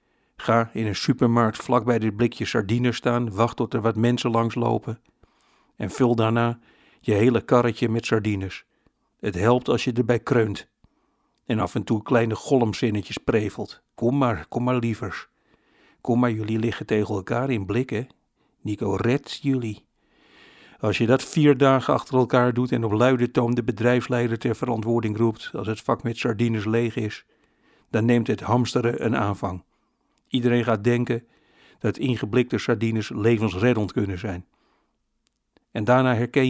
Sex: male